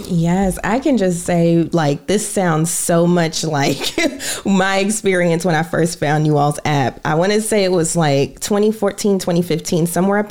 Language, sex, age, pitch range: English, female, 20-39, 160-200 Hz